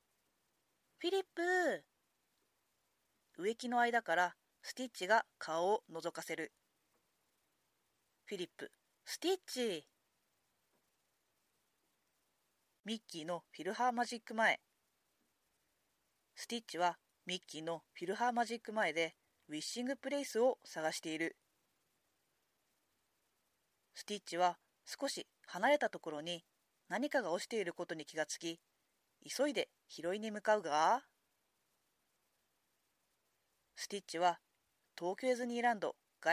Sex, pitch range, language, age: female, 175-270 Hz, Japanese, 40-59